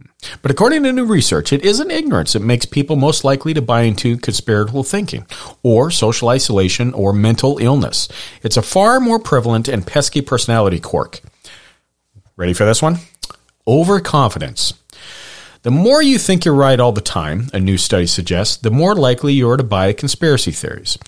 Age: 40-59